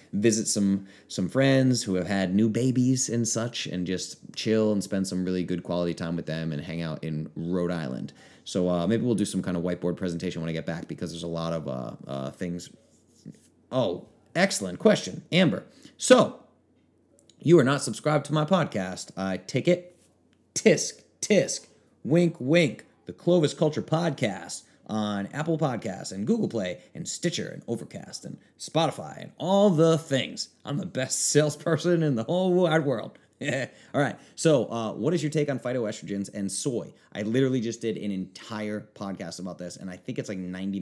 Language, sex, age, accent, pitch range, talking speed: English, male, 30-49, American, 95-130 Hz, 185 wpm